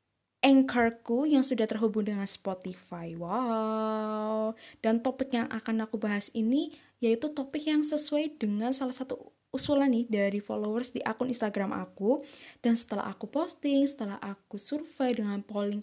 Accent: native